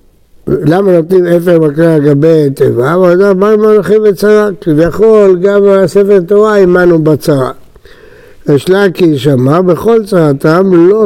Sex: male